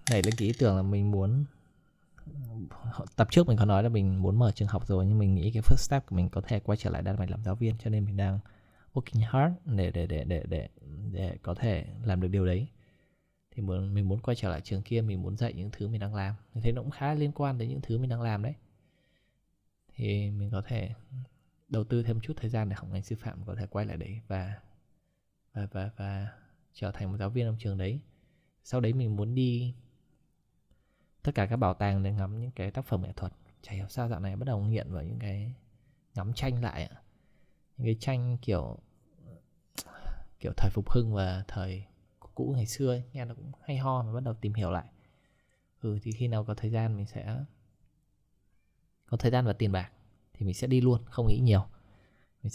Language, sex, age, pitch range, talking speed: Vietnamese, male, 20-39, 100-120 Hz, 225 wpm